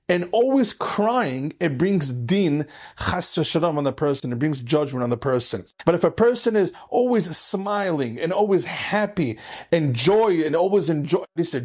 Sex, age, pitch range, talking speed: male, 30-49, 160-200 Hz, 165 wpm